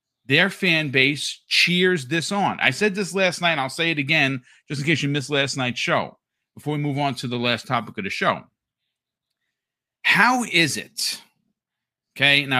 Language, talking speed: English, 185 wpm